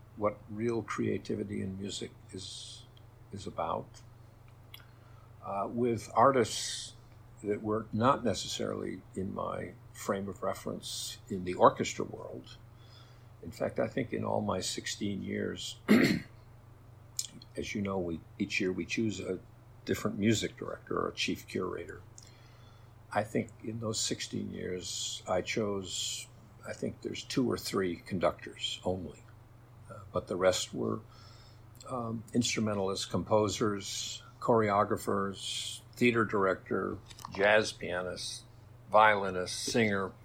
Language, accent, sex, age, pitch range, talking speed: English, American, male, 60-79, 105-115 Hz, 120 wpm